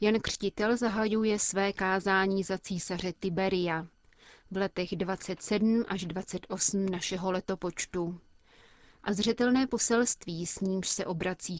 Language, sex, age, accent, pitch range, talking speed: Czech, female, 30-49, native, 180-205 Hz, 115 wpm